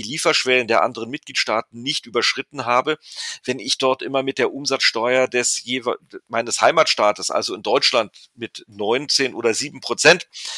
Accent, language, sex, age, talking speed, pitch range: German, German, male, 40-59, 145 wpm, 125-145 Hz